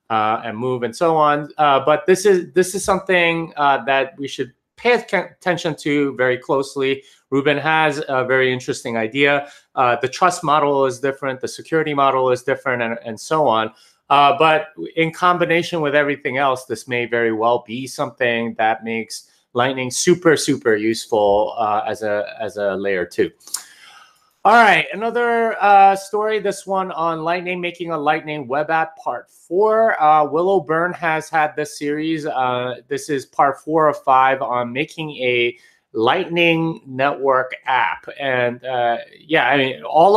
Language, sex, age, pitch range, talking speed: English, male, 30-49, 130-165 Hz, 165 wpm